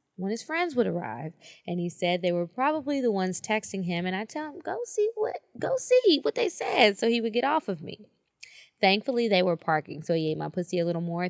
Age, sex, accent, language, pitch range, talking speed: 20-39, female, American, English, 165-205 Hz, 245 wpm